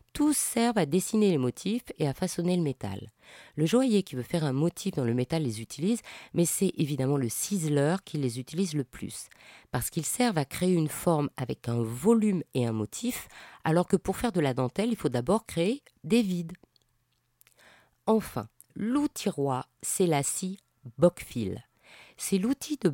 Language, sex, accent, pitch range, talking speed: French, female, French, 145-230 Hz, 180 wpm